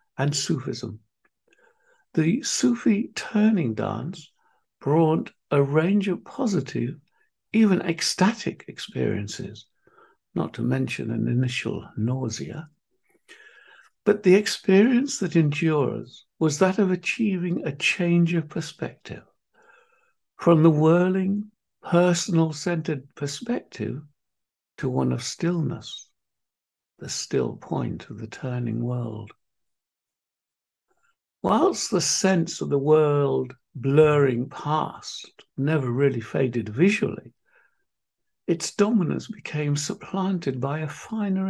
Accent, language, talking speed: British, English, 100 wpm